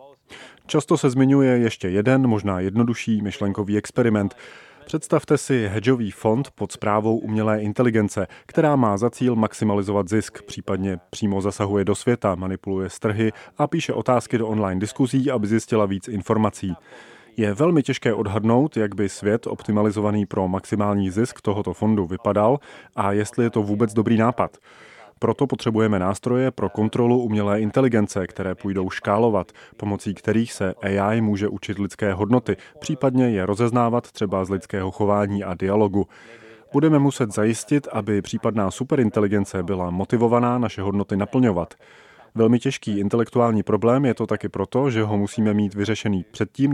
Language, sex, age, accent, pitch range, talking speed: Czech, male, 30-49, native, 100-120 Hz, 145 wpm